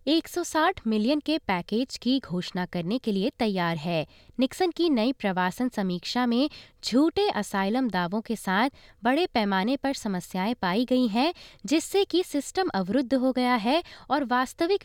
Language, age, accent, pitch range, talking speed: Hindi, 20-39, native, 205-290 Hz, 160 wpm